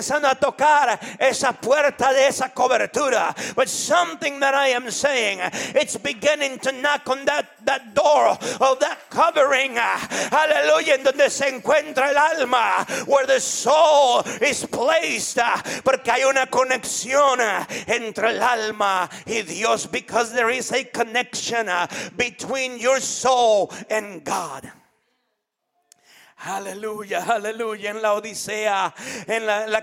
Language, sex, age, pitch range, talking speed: English, male, 40-59, 240-285 Hz, 100 wpm